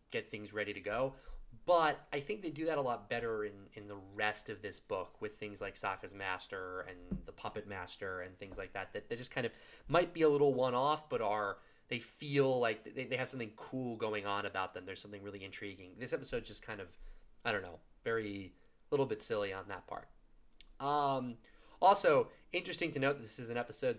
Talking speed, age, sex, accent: 220 wpm, 20-39, male, American